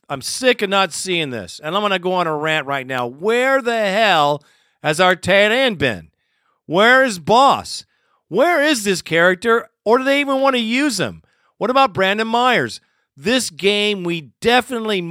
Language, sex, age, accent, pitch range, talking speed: English, male, 50-69, American, 155-225 Hz, 185 wpm